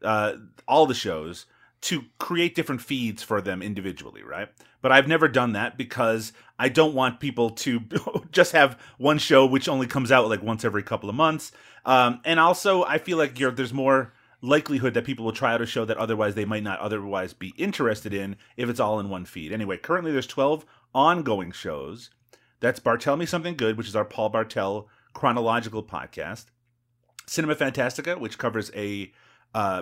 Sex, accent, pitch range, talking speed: male, American, 105-130 Hz, 185 wpm